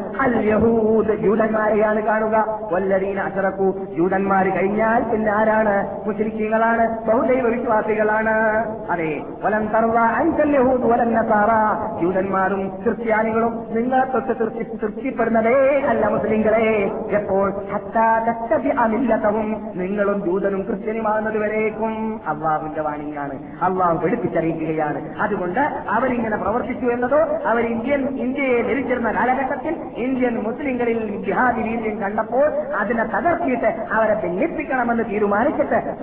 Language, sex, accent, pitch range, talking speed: Malayalam, male, native, 200-230 Hz, 75 wpm